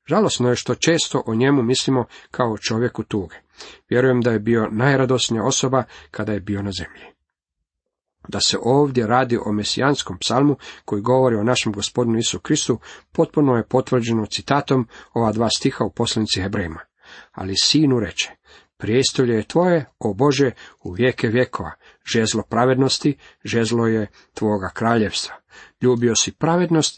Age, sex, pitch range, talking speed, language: 40-59, male, 110-130 Hz, 145 wpm, Croatian